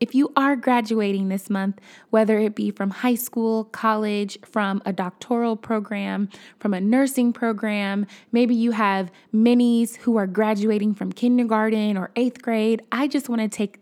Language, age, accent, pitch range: English, 20-39, American, 205-235 Hz